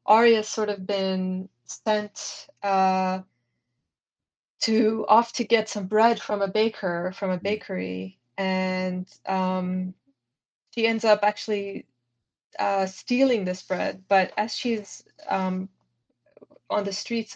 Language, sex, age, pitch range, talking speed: English, female, 20-39, 180-205 Hz, 120 wpm